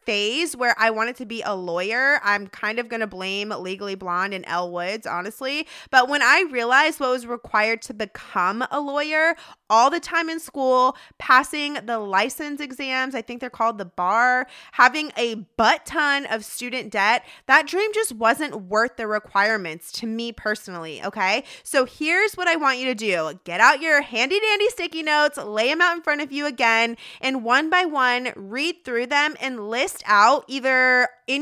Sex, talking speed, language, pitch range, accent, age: female, 190 wpm, English, 205-290 Hz, American, 20-39